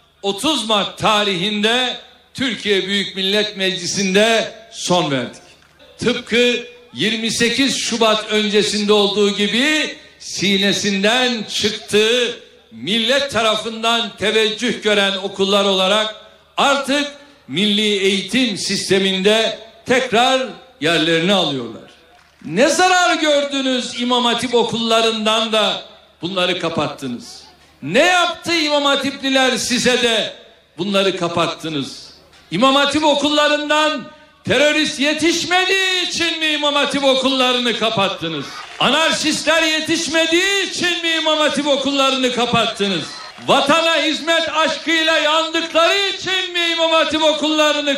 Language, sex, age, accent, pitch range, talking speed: Turkish, male, 60-79, native, 210-300 Hz, 95 wpm